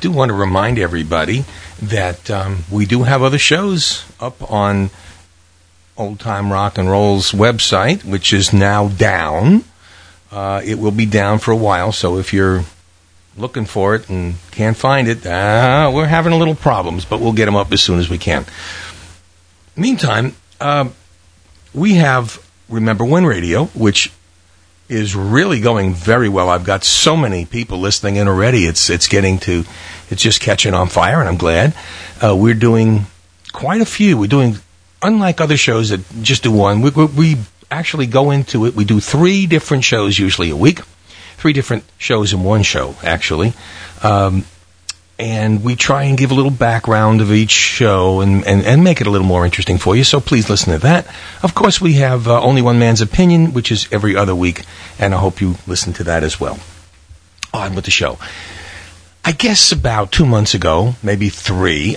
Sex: male